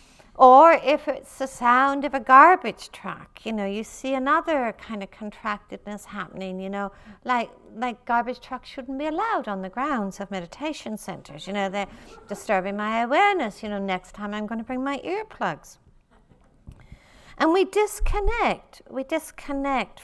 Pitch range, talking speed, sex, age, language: 200-290 Hz, 160 wpm, female, 60-79, English